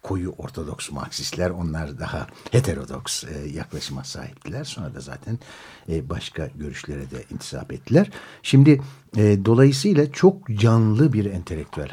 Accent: native